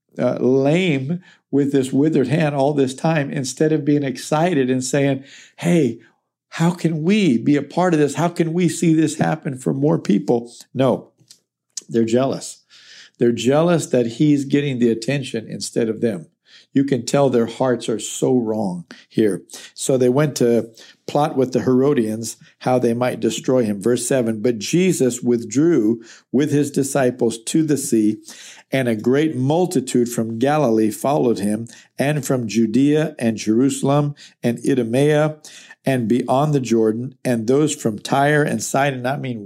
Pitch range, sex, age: 120-150 Hz, male, 50-69